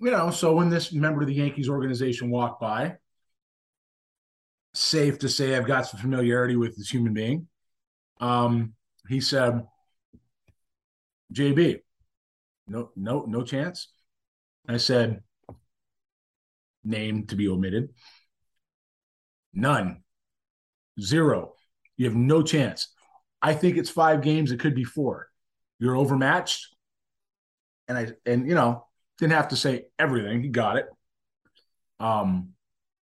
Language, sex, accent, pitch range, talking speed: English, male, American, 115-150 Hz, 125 wpm